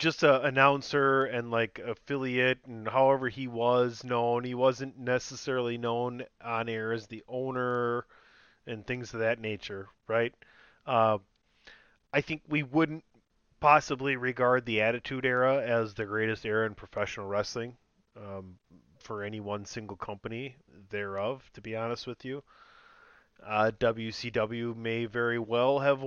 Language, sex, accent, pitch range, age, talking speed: English, male, American, 110-135 Hz, 30-49, 140 wpm